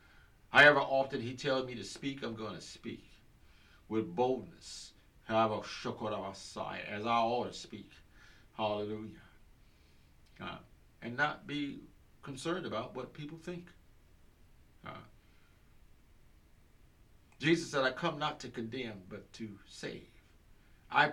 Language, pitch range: English, 80-115 Hz